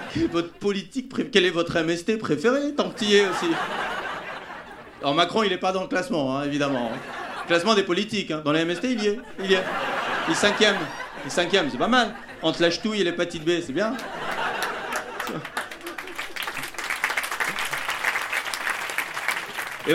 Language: French